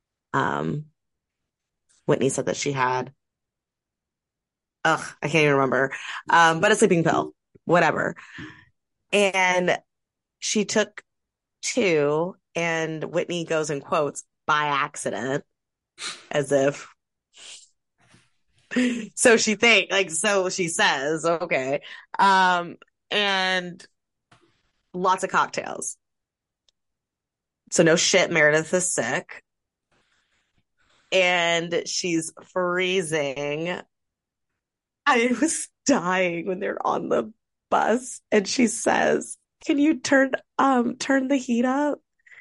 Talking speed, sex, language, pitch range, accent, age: 100 wpm, female, English, 170-235 Hz, American, 30-49